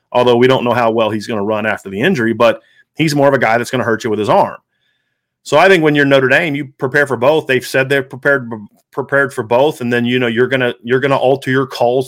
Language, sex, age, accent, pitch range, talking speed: English, male, 40-59, American, 120-145 Hz, 280 wpm